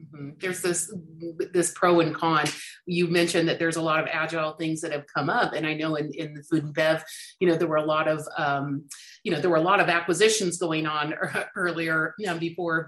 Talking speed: 240 wpm